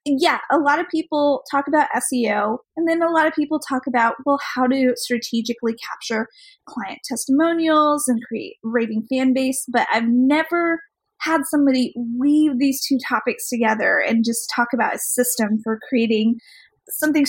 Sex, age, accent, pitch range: female, 30-49, American, 245-295 Hz